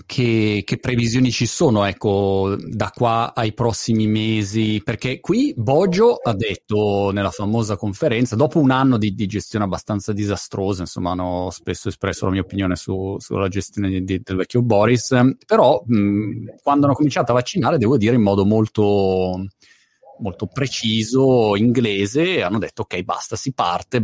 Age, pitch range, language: 30-49, 100-125 Hz, Italian